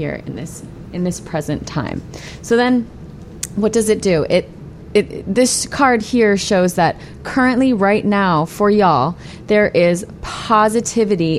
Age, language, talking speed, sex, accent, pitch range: 30-49, English, 150 wpm, female, American, 165-215 Hz